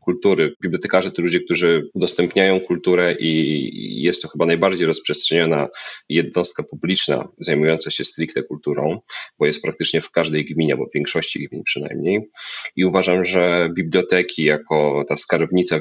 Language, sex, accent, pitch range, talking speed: Polish, male, native, 80-95 Hz, 135 wpm